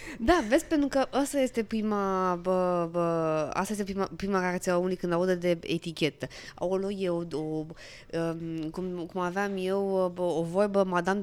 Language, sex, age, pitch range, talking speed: Romanian, female, 20-39, 170-230 Hz, 145 wpm